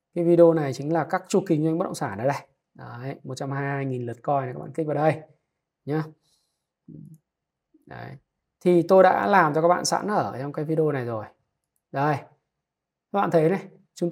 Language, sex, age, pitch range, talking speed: Vietnamese, male, 20-39, 150-185 Hz, 200 wpm